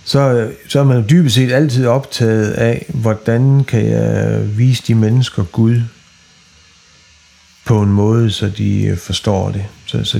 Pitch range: 110-135 Hz